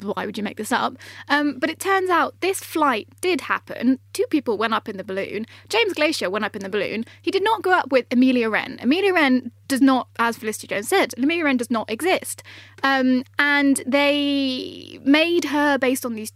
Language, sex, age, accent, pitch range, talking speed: English, female, 10-29, British, 235-295 Hz, 215 wpm